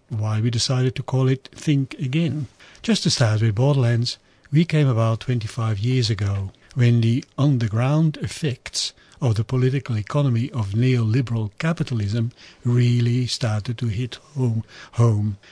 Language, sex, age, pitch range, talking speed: English, male, 60-79, 115-145 Hz, 140 wpm